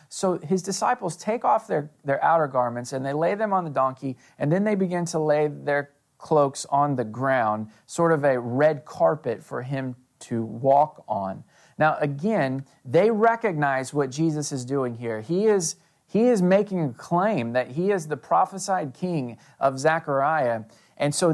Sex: male